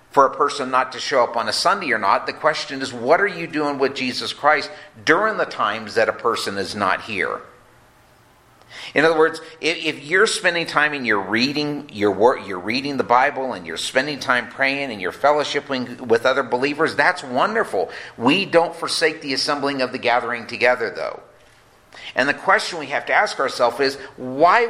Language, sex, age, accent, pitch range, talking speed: English, male, 50-69, American, 115-160 Hz, 195 wpm